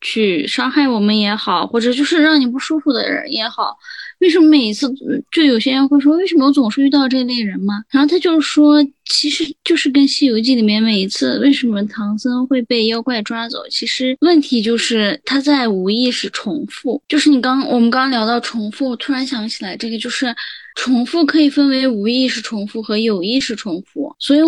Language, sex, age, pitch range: Chinese, female, 10-29, 225-285 Hz